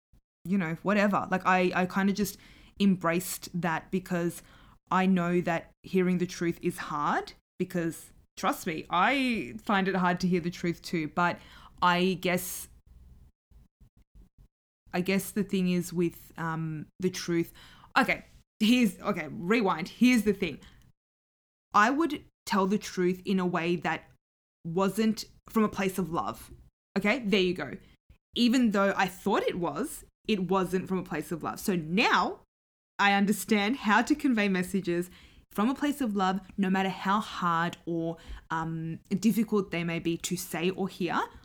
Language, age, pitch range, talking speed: English, 20-39, 175-205 Hz, 160 wpm